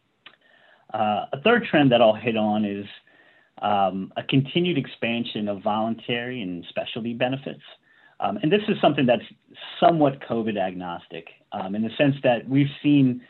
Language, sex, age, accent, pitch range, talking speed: English, male, 30-49, American, 100-125 Hz, 155 wpm